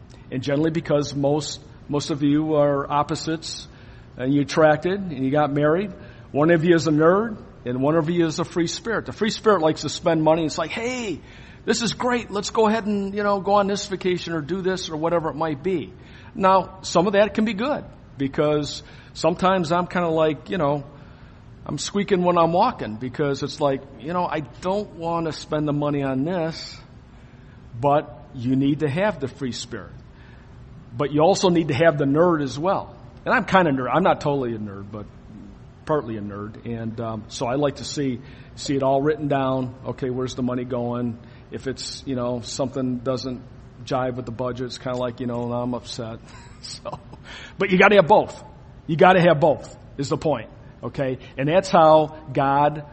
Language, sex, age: English, male, 50-69